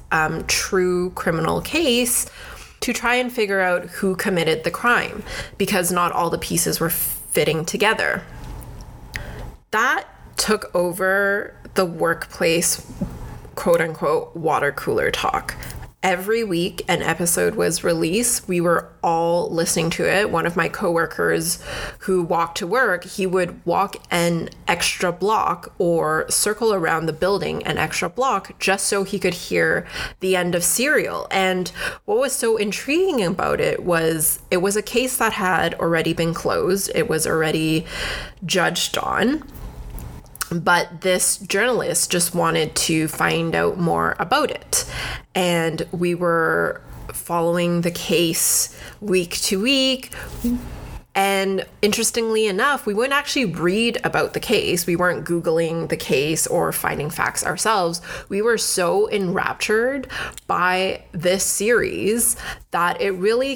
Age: 20-39